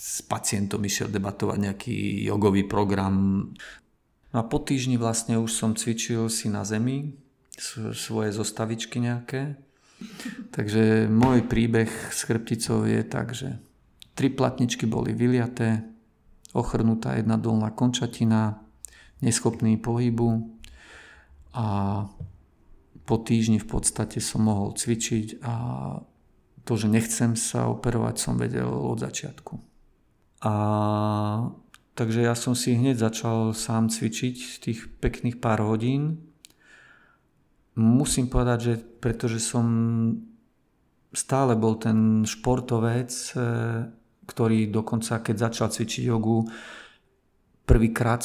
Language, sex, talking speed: Slovak, male, 105 wpm